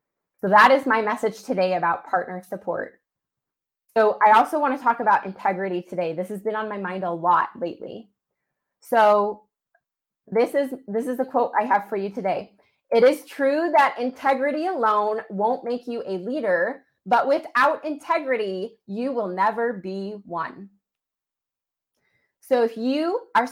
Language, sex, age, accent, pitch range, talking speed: English, female, 20-39, American, 200-260 Hz, 155 wpm